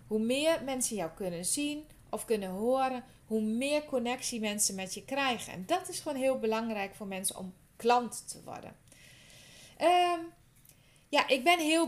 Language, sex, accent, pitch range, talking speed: Dutch, female, Dutch, 215-275 Hz, 165 wpm